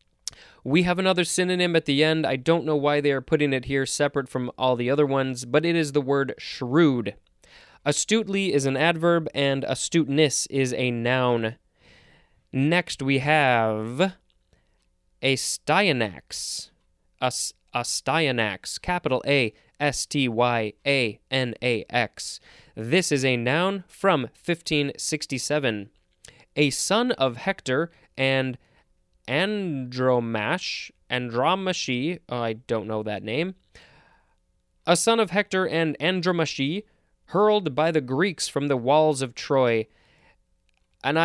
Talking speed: 115 wpm